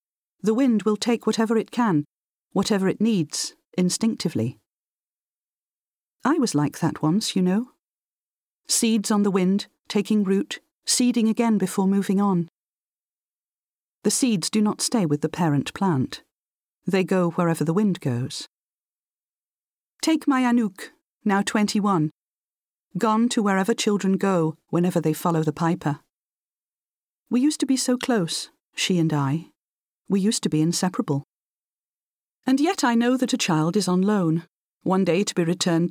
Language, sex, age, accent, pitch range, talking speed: English, female, 40-59, British, 170-225 Hz, 145 wpm